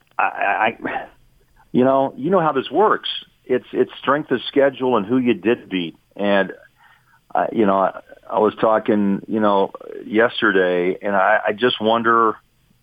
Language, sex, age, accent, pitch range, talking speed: English, male, 50-69, American, 95-120 Hz, 165 wpm